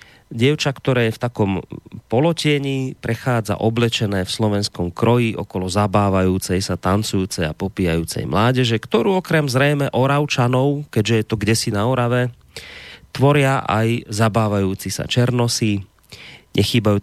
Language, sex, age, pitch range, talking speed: Slovak, male, 30-49, 100-125 Hz, 120 wpm